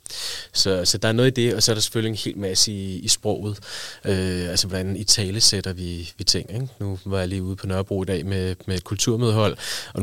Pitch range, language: 95-115 Hz, Danish